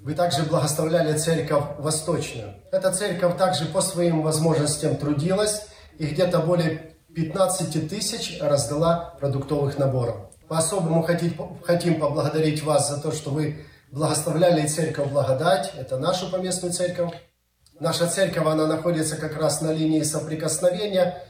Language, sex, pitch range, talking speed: English, male, 150-180 Hz, 125 wpm